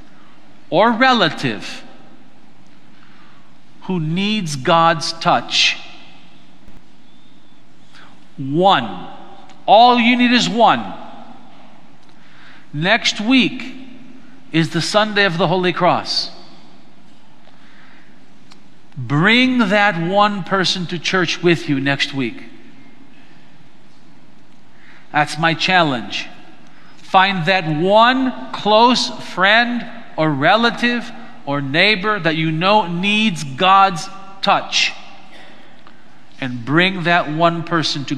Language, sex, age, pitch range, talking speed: English, male, 50-69, 165-235 Hz, 85 wpm